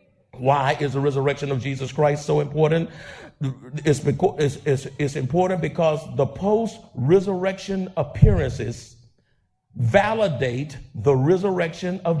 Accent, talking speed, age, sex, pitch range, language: American, 110 wpm, 50-69, male, 145-220 Hz, English